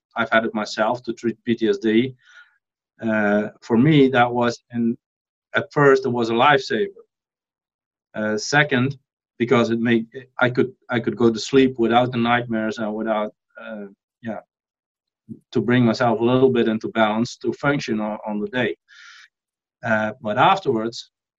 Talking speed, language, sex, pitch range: 155 wpm, English, male, 115-140 Hz